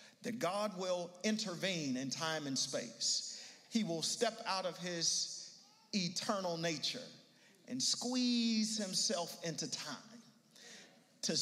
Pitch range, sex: 165-230 Hz, male